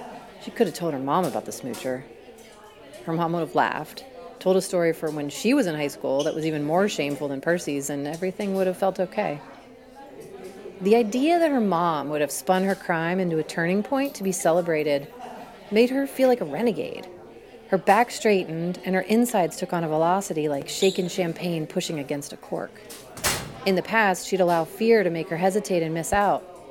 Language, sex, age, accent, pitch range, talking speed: English, female, 30-49, American, 170-235 Hz, 200 wpm